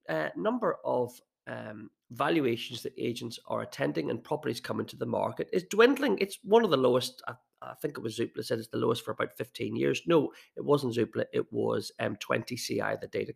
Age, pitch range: 30-49, 135-195 Hz